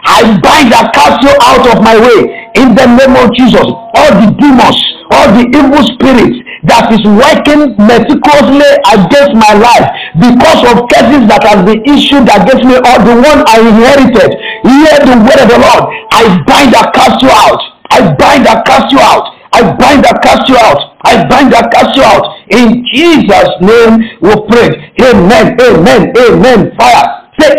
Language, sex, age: English, male, 50-69